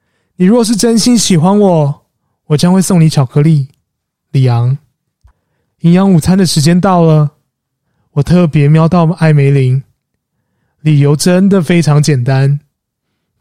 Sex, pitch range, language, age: male, 145-185 Hz, Chinese, 20-39